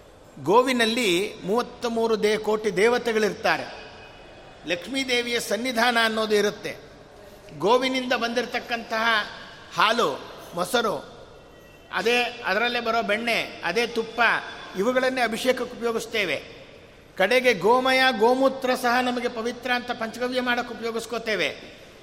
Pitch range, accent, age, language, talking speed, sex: 190-245 Hz, native, 50-69, Kannada, 95 wpm, male